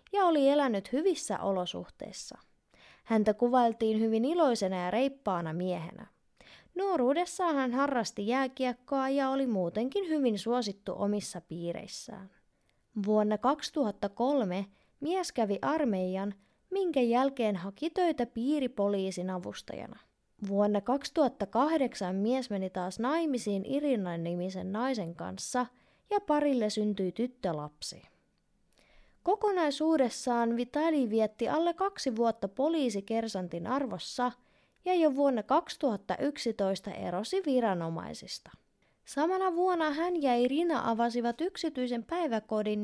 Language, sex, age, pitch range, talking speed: Finnish, female, 20-39, 205-295 Hz, 100 wpm